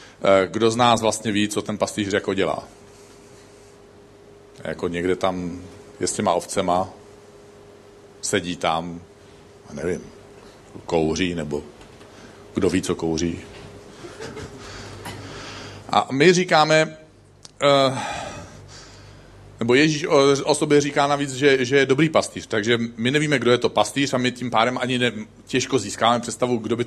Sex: male